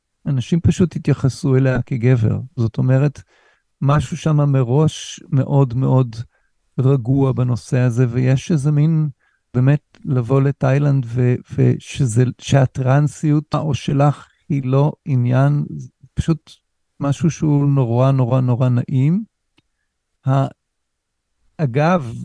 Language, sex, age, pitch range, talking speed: Hebrew, male, 50-69, 125-145 Hz, 95 wpm